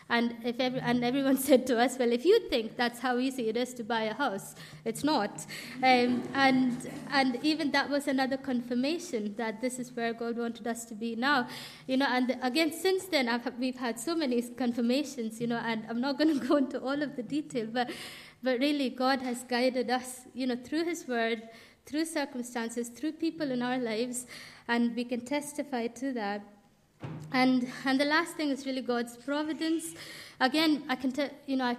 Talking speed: 200 wpm